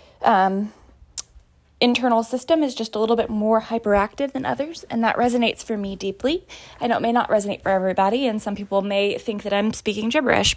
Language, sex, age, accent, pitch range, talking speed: English, female, 20-39, American, 195-235 Hz, 200 wpm